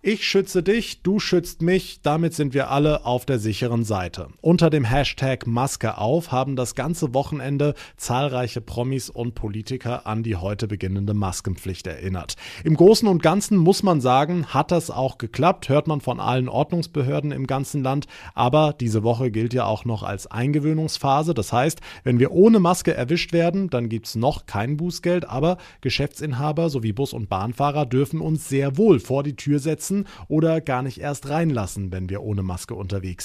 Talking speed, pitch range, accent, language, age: 180 wpm, 115-155 Hz, German, German, 30-49